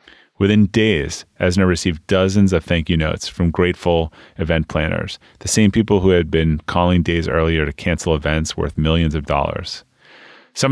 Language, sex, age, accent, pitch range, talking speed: English, male, 30-49, American, 80-100 Hz, 170 wpm